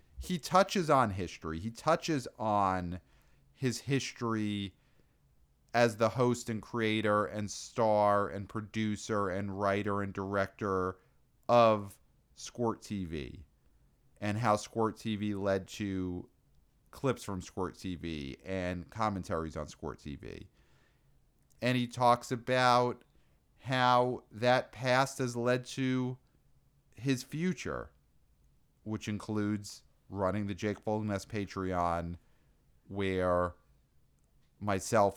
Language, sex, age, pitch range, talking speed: English, male, 40-59, 95-120 Hz, 105 wpm